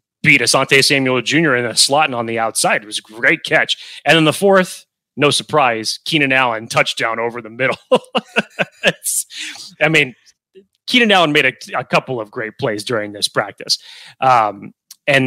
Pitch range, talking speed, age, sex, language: 115-150 Hz, 175 wpm, 30-49, male, English